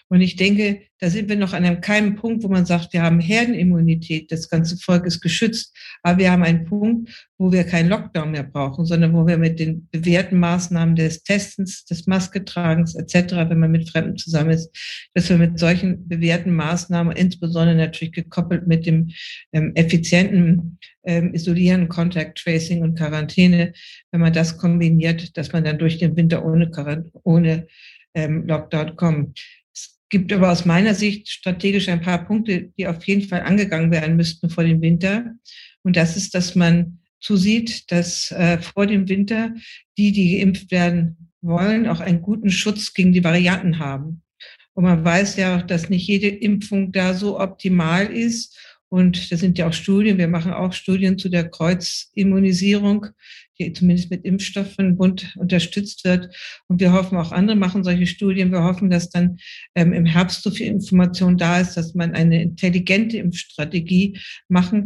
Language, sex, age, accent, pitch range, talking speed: German, female, 60-79, German, 170-195 Hz, 170 wpm